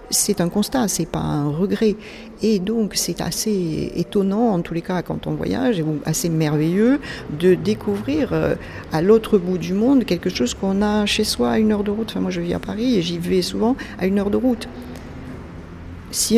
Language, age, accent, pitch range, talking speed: French, 40-59, French, 150-210 Hz, 205 wpm